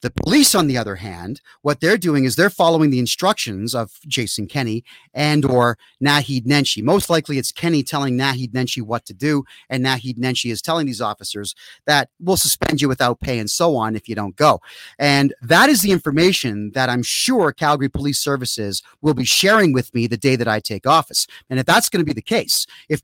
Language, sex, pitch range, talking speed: English, male, 120-165 Hz, 215 wpm